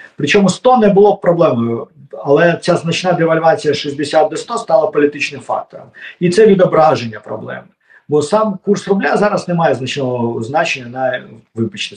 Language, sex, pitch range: Ukrainian, male, 130-180 Hz